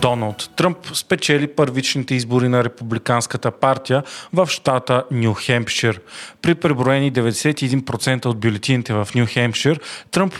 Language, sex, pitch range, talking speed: Bulgarian, male, 120-150 Hz, 120 wpm